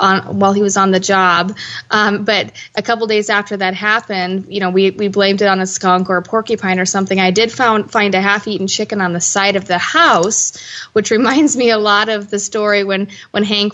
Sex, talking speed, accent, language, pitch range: female, 230 wpm, American, English, 190-210 Hz